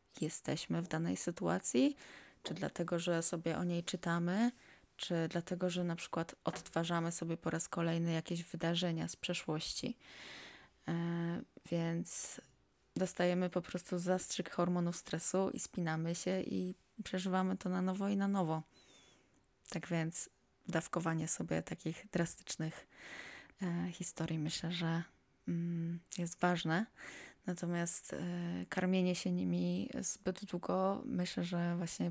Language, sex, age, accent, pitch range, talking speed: Polish, female, 20-39, native, 160-180 Hz, 120 wpm